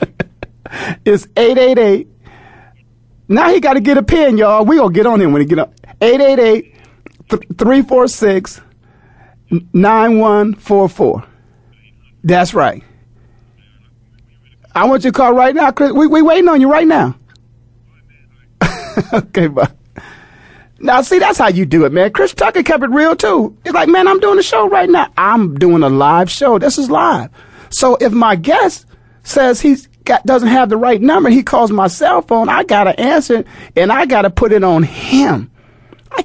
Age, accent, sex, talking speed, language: 40-59, American, male, 160 wpm, English